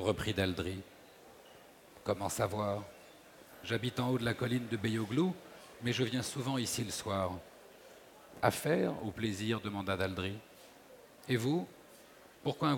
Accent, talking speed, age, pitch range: French, 145 wpm, 50-69, 110-135 Hz